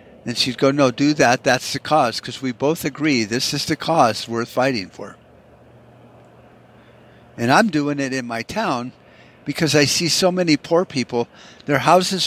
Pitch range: 115-150 Hz